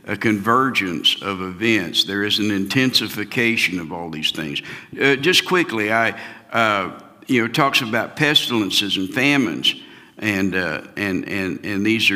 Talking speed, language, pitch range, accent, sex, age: 155 wpm, English, 110-155 Hz, American, male, 60-79